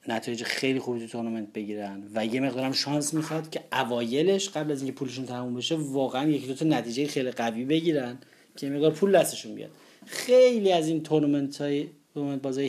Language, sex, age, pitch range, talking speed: Persian, male, 30-49, 120-155 Hz, 185 wpm